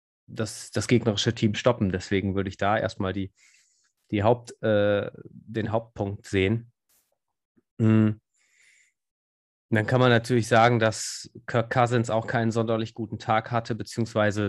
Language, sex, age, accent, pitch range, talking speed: German, male, 20-39, German, 100-115 Hz, 135 wpm